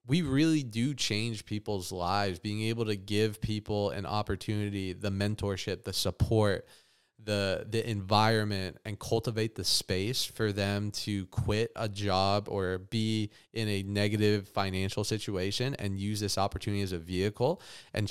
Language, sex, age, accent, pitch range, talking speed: English, male, 20-39, American, 95-110 Hz, 150 wpm